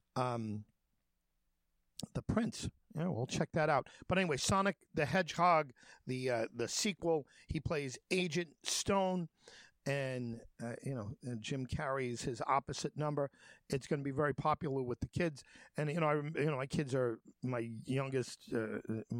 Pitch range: 115-145 Hz